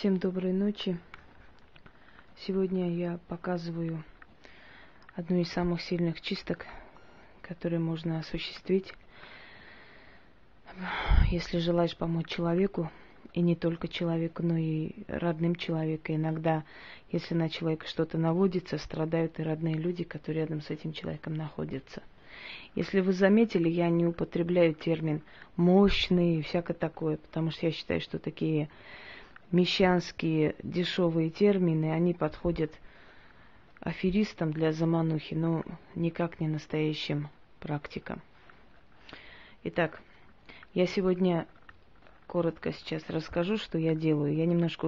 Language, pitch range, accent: Russian, 160-175 Hz, native